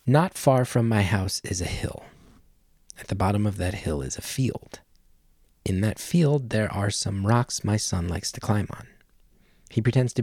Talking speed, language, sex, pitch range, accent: 195 wpm, English, male, 95-125 Hz, American